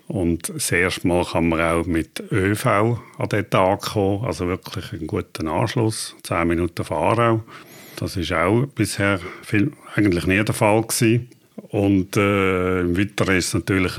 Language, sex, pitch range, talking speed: German, male, 90-110 Hz, 160 wpm